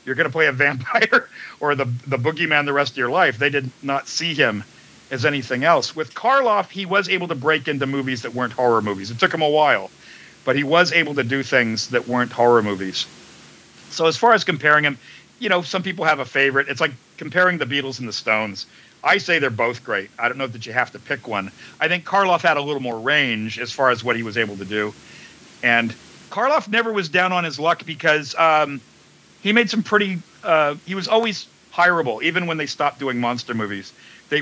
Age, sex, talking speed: 50-69, male, 230 wpm